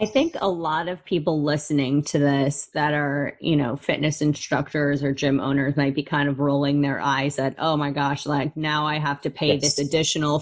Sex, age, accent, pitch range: female, 20-39, American, 145-165 Hz